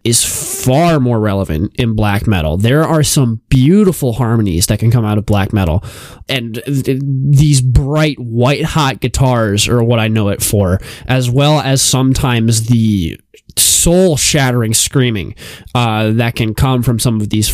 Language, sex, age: English, male, 20-39